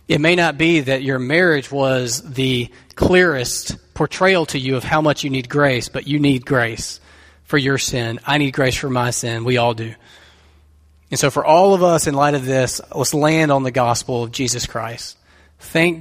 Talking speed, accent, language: 200 wpm, American, English